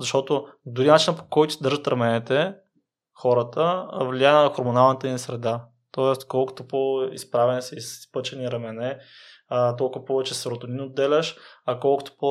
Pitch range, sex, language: 125-150 Hz, male, Bulgarian